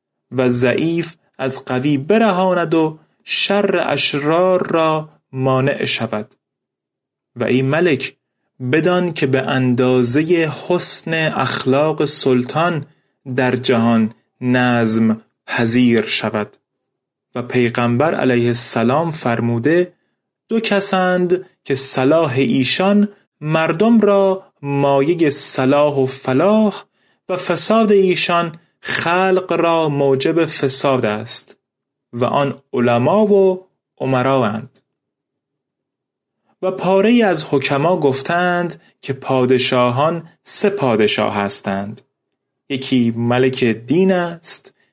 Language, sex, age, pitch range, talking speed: Persian, male, 30-49, 125-180 Hz, 90 wpm